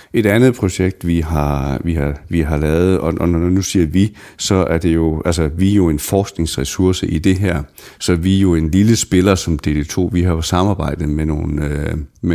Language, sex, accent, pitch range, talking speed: Danish, male, native, 75-95 Hz, 210 wpm